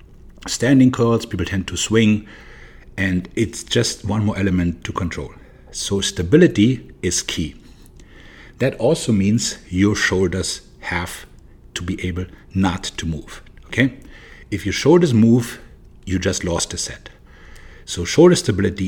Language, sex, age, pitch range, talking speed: English, male, 60-79, 90-110 Hz, 135 wpm